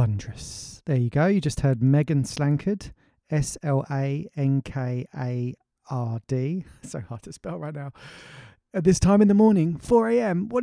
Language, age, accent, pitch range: English, 30-49, British, 120-145 Hz